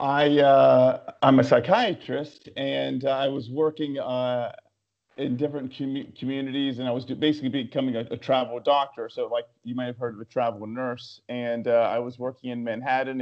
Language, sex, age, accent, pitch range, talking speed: English, male, 40-59, American, 120-140 Hz, 185 wpm